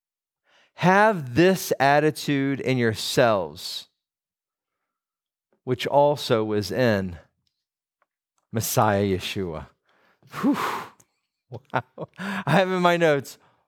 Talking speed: 80 wpm